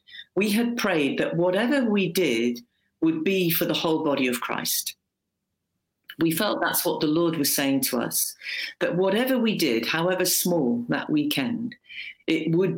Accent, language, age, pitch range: British, English, 50-69, 140-230 Hz